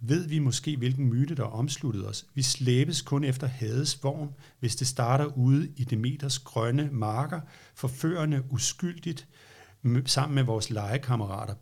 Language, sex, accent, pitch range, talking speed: Danish, male, native, 115-150 Hz, 140 wpm